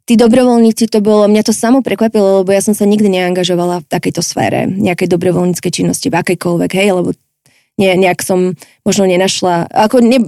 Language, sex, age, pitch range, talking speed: Slovak, female, 20-39, 185-205 Hz, 180 wpm